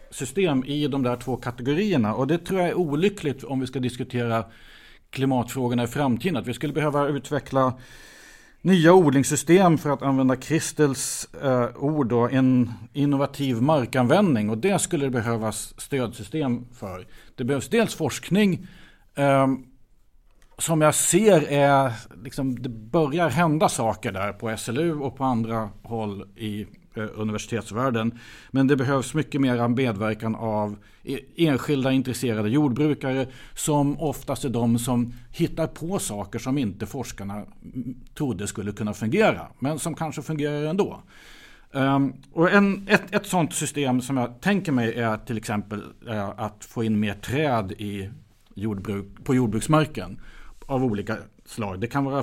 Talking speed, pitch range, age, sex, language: 145 wpm, 115-145 Hz, 50-69, male, Swedish